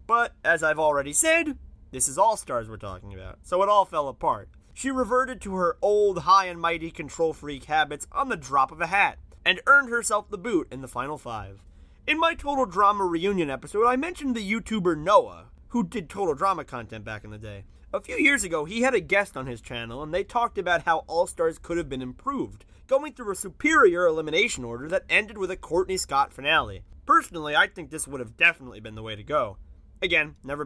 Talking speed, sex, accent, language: 210 wpm, male, American, English